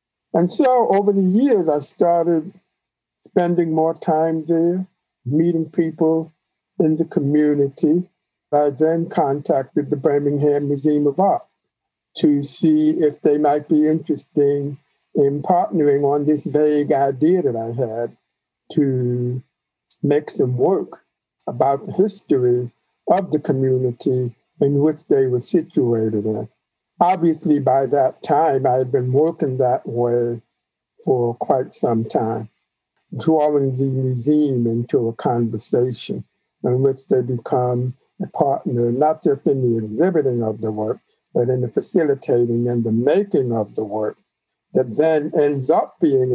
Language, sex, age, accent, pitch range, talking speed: English, male, 60-79, American, 125-160 Hz, 135 wpm